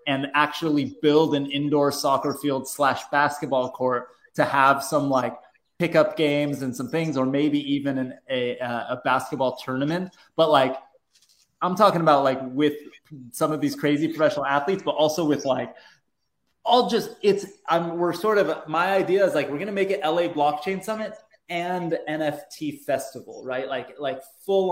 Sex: male